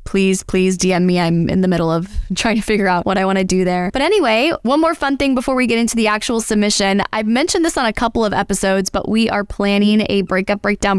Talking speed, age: 255 wpm, 10-29